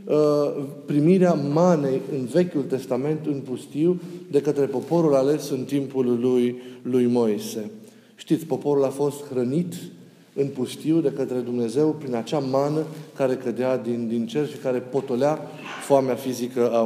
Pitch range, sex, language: 130-175 Hz, male, Romanian